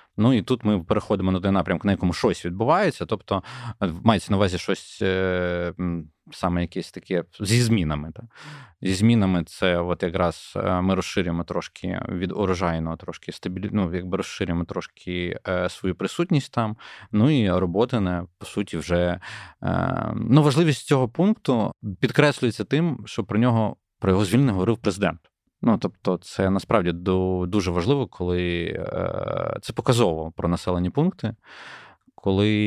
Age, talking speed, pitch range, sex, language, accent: 20-39, 140 wpm, 90-110 Hz, male, Ukrainian, native